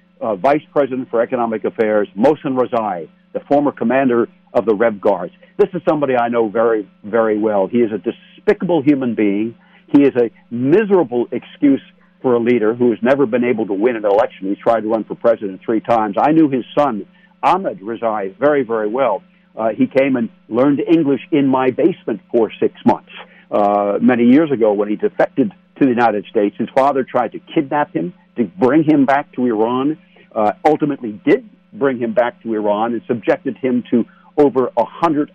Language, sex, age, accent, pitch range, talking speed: English, male, 60-79, American, 115-180 Hz, 190 wpm